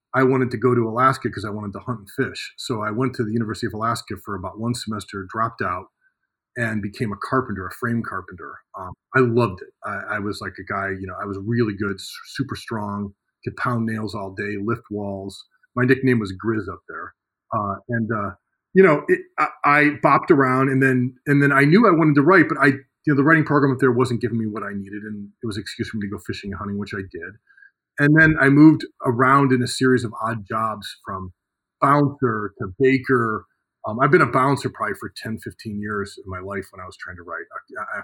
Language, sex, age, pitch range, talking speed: English, male, 30-49, 100-135 Hz, 240 wpm